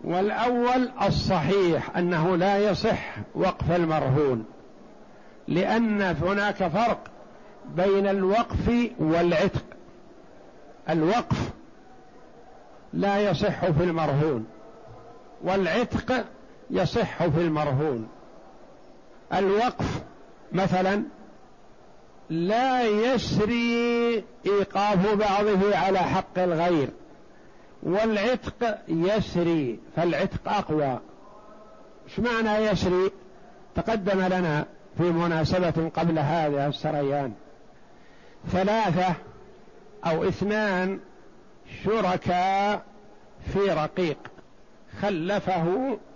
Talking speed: 70 wpm